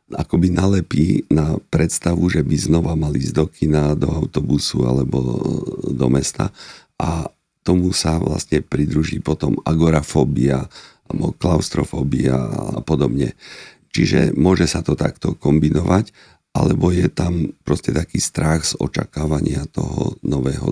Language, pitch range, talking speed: Slovak, 75-85 Hz, 125 wpm